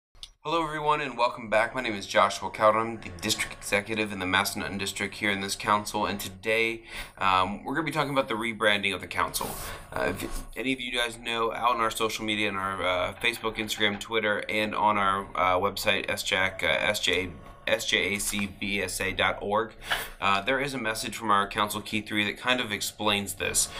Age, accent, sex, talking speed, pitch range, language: 30-49, American, male, 190 wpm, 95-110 Hz, English